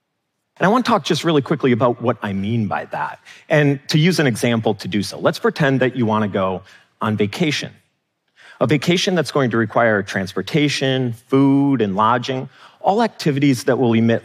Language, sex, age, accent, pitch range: Korean, male, 40-59, American, 115-180 Hz